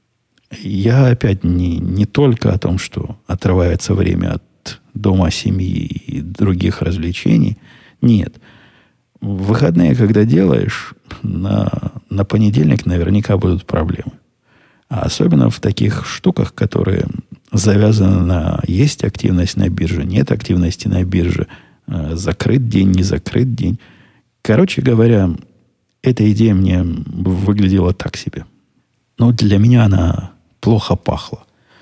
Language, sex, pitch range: Russian, male, 90-115 Hz